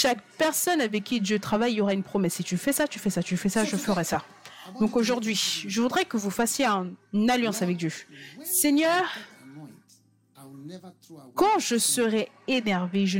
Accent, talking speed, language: French, 200 wpm, French